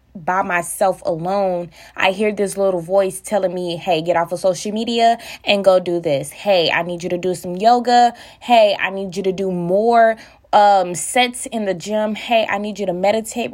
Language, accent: English, American